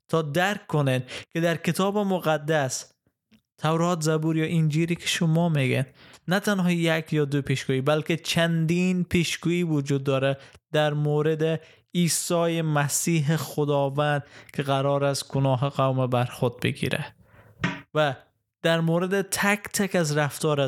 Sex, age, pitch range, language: male, 20-39, 135-160 Hz, Persian